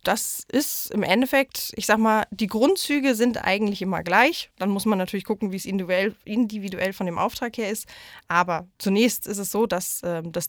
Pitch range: 185-230 Hz